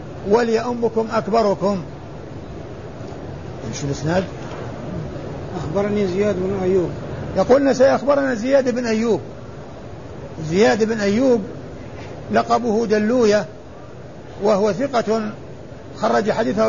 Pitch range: 170-235 Hz